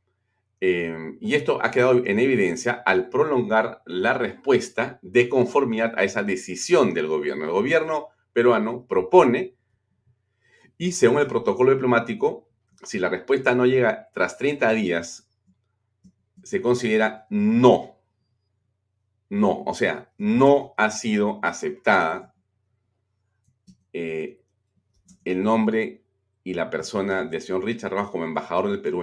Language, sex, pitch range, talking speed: Spanish, male, 100-125 Hz, 120 wpm